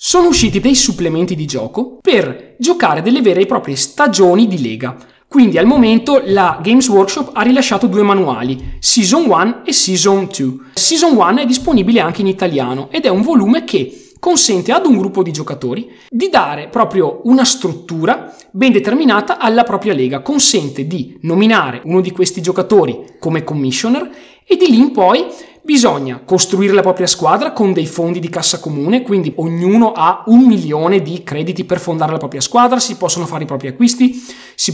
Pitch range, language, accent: 165-240 Hz, Italian, native